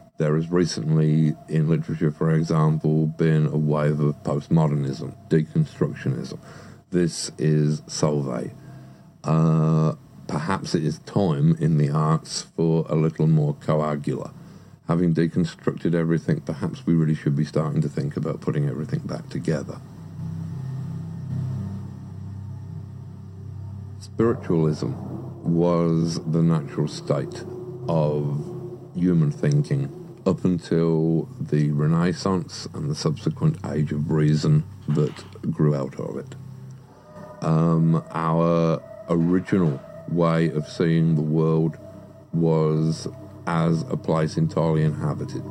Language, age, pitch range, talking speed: English, 50-69, 80-120 Hz, 110 wpm